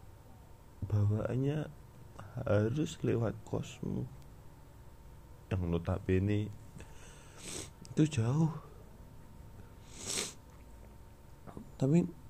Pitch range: 95-115 Hz